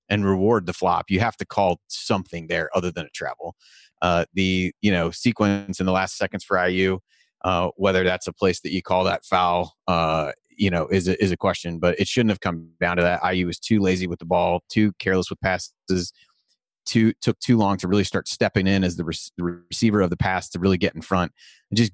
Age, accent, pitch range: 30-49, American, 90-100 Hz